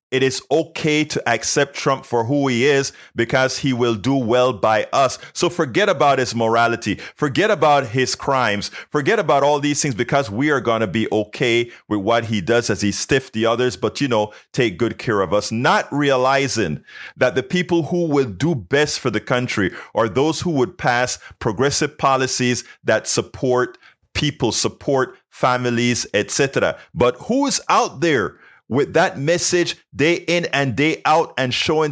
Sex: male